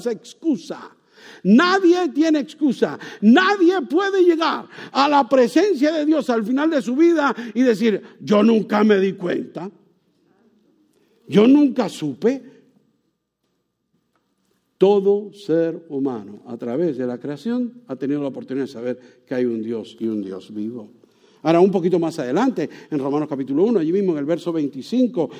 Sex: male